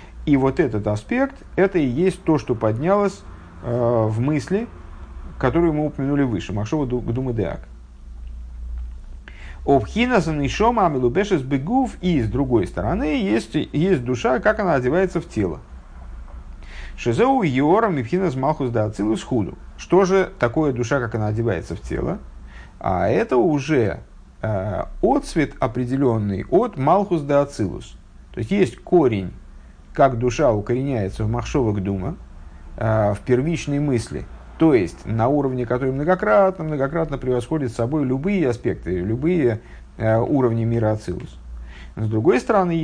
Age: 50-69